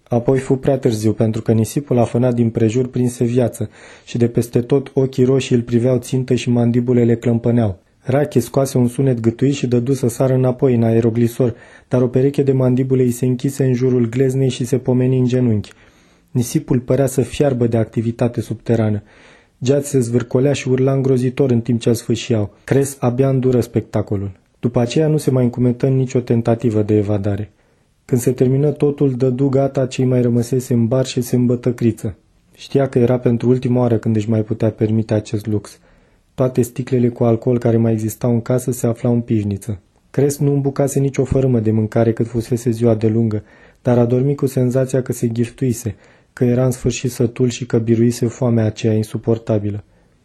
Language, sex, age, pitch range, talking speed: Romanian, male, 20-39, 115-130 Hz, 185 wpm